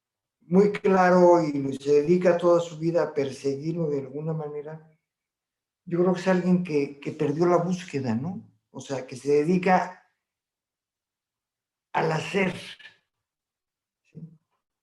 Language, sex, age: Spanish, male, 50-69